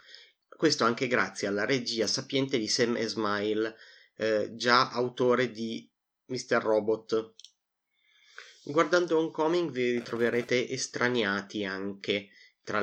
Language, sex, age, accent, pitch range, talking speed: Italian, male, 30-49, native, 110-130 Hz, 100 wpm